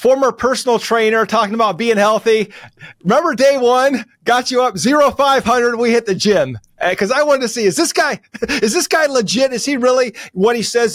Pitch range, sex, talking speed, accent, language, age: 185-240 Hz, male, 215 wpm, American, English, 30-49